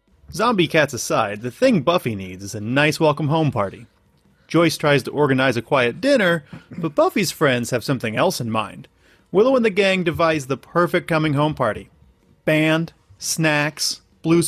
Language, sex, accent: English, male, American